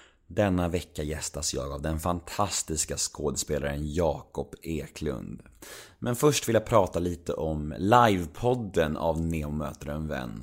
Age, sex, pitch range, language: 30-49, male, 85-115 Hz, Swedish